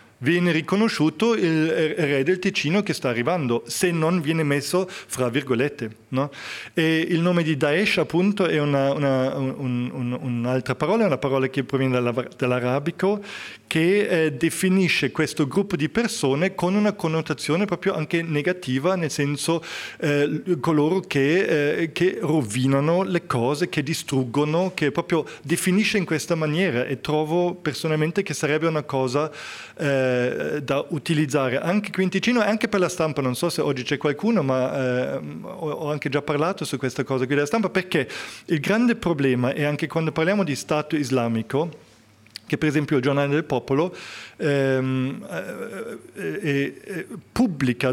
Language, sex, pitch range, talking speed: Italian, male, 135-175 Hz, 150 wpm